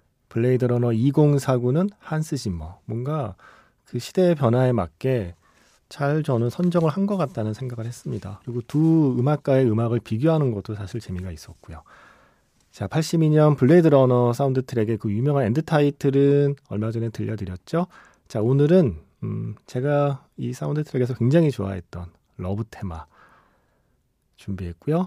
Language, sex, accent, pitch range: Korean, male, native, 100-145 Hz